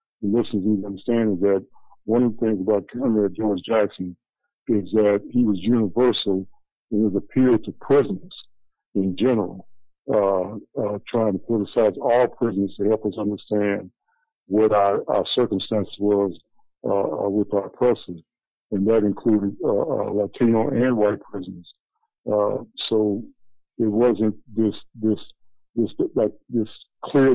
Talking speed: 140 wpm